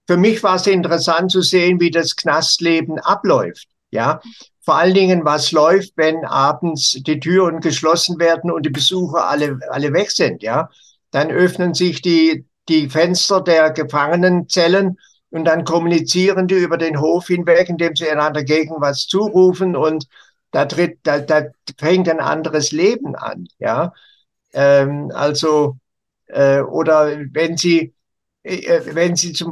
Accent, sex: German, male